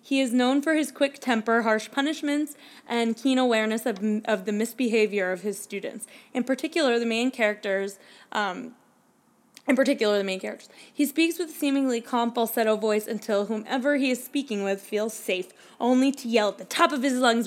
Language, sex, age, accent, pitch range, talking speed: English, female, 20-39, American, 215-255 Hz, 190 wpm